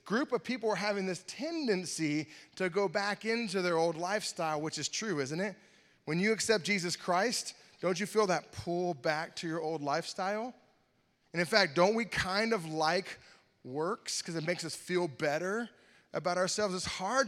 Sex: male